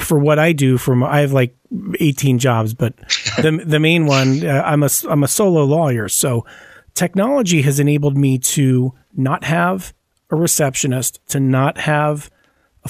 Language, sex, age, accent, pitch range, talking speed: English, male, 40-59, American, 130-155 Hz, 165 wpm